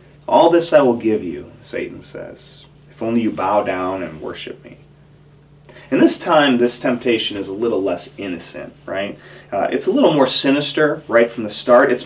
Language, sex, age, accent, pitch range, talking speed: English, male, 30-49, American, 120-150 Hz, 190 wpm